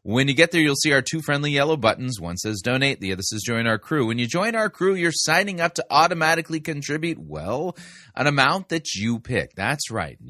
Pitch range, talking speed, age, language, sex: 100-145 Hz, 225 wpm, 30-49, English, male